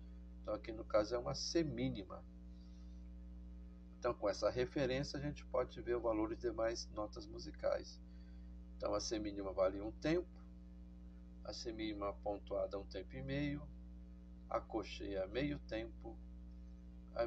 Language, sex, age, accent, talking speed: Portuguese, male, 60-79, Brazilian, 135 wpm